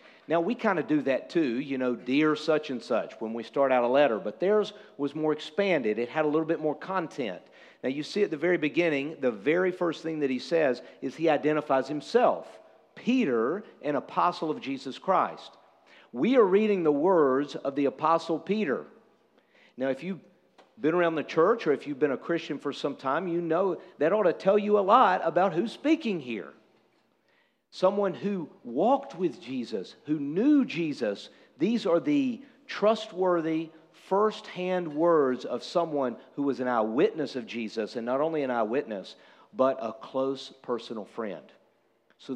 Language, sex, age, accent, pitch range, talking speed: English, male, 50-69, American, 145-205 Hz, 180 wpm